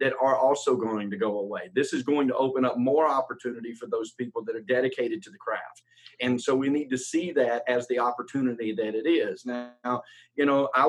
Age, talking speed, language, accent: 40-59, 225 wpm, English, American